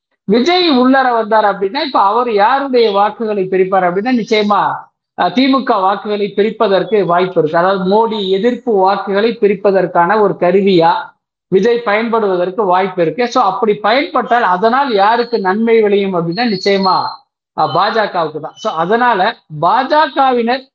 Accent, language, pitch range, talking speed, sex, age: native, Tamil, 180-230 Hz, 120 wpm, male, 50-69